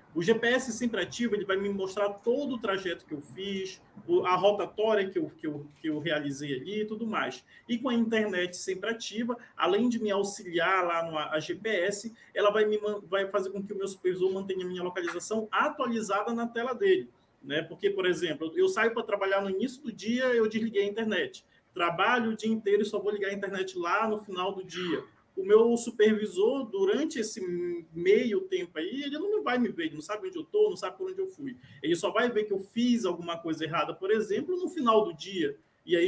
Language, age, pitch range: Portuguese, 20-39, 180-235 Hz